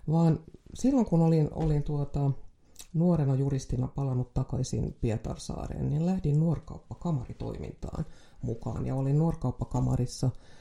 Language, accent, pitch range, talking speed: Finnish, native, 125-160 Hz, 100 wpm